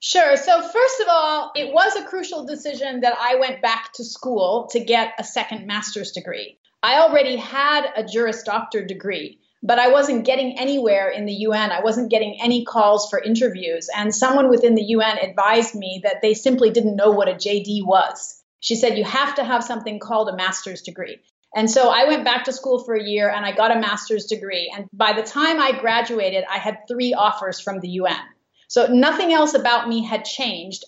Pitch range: 210-260 Hz